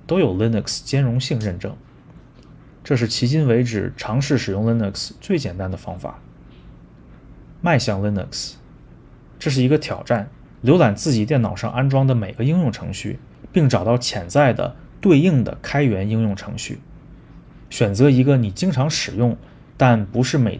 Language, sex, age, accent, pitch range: Chinese, male, 20-39, native, 105-140 Hz